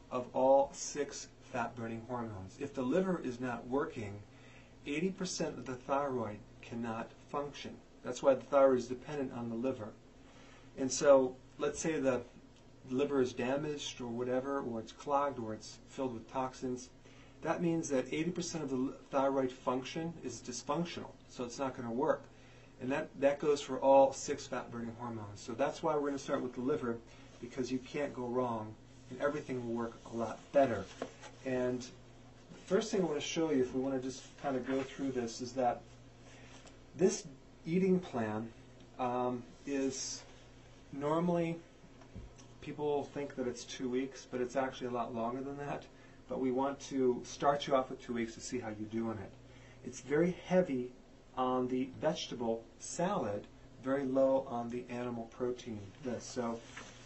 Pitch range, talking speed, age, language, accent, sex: 125-140 Hz, 170 wpm, 40-59, English, American, male